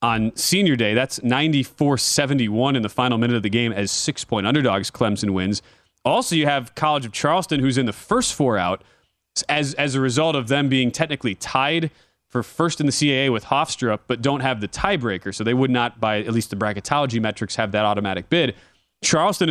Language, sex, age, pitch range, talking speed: English, male, 30-49, 115-140 Hz, 200 wpm